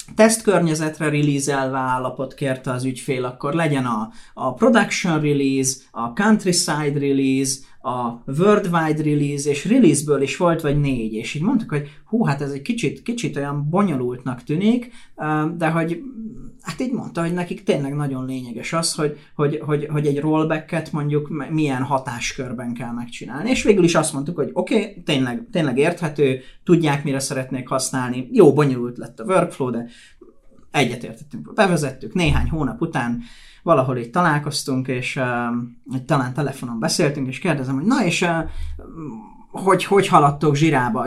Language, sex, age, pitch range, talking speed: Hungarian, male, 30-49, 130-175 Hz, 150 wpm